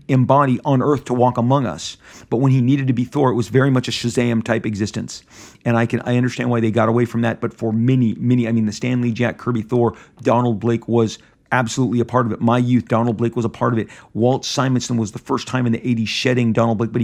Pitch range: 115-130 Hz